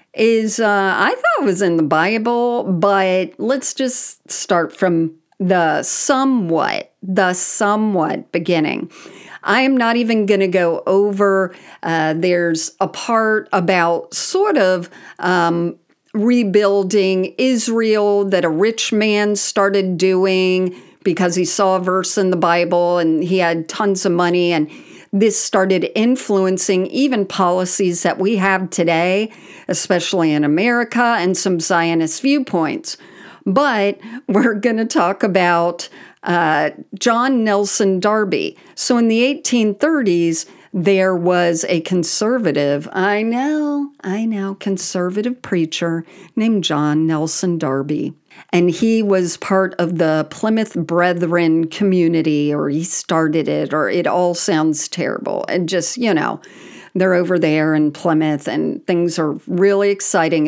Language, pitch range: English, 175-215 Hz